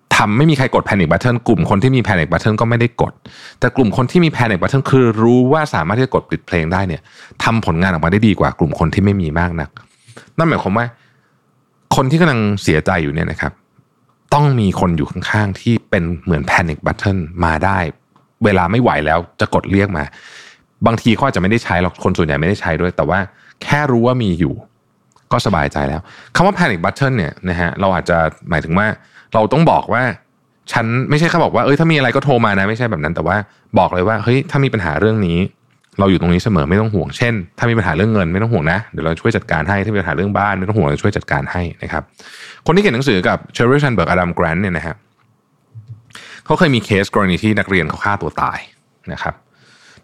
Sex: male